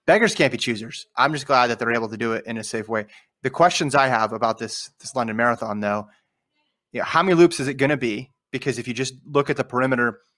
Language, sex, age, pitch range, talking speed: English, male, 30-49, 120-135 Hz, 250 wpm